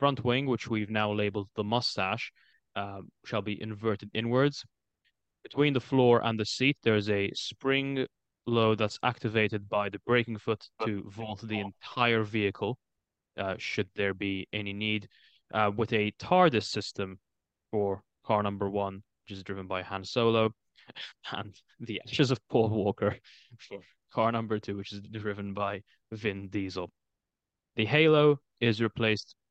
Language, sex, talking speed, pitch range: English, male, 155 wpm, 100-115 Hz